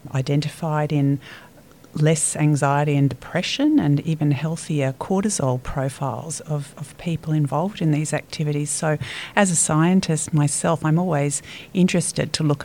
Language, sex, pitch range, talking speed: English, female, 145-175 Hz, 135 wpm